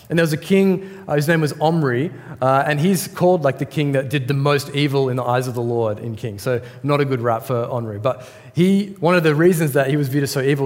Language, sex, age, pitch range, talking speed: English, male, 20-39, 130-155 Hz, 280 wpm